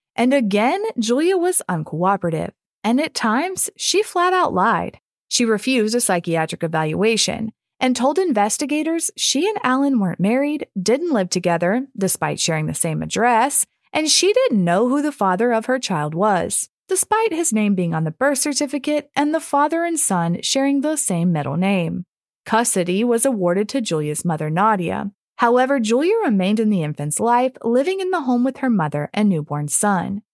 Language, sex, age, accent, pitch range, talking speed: English, female, 30-49, American, 185-275 Hz, 170 wpm